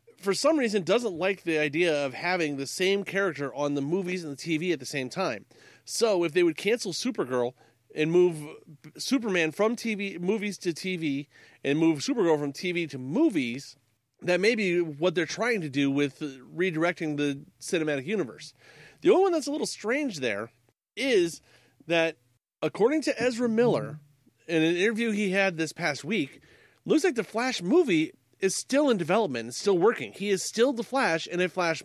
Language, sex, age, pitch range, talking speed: English, male, 40-59, 150-230 Hz, 185 wpm